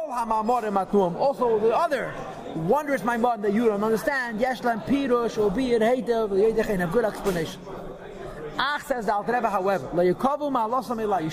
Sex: male